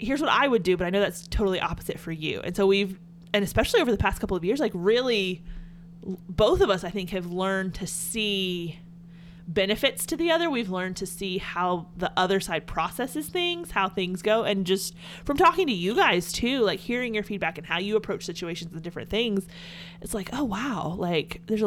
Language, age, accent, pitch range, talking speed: English, 30-49, American, 170-200 Hz, 215 wpm